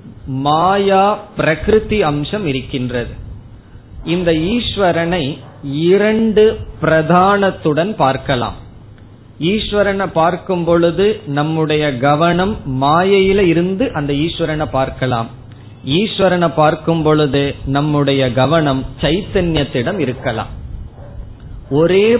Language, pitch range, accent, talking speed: Tamil, 130-180 Hz, native, 75 wpm